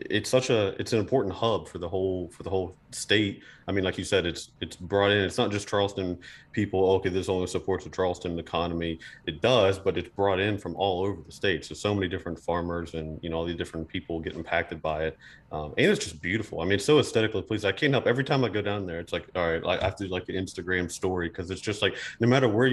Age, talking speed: 30-49, 265 wpm